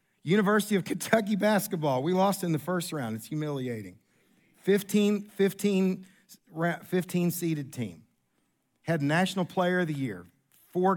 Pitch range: 155-210 Hz